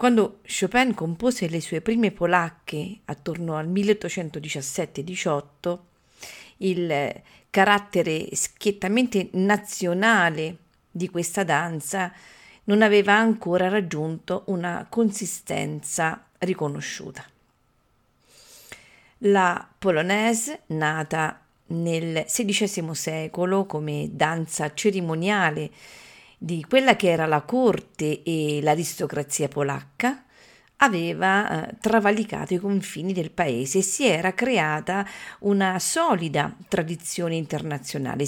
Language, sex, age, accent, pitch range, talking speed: Italian, female, 40-59, native, 160-205 Hz, 90 wpm